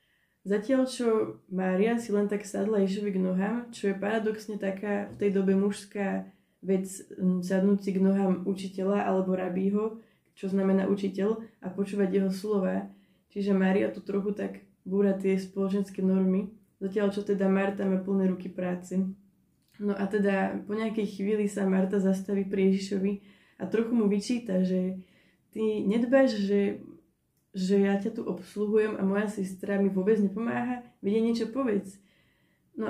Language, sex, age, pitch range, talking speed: Slovak, female, 20-39, 190-210 Hz, 155 wpm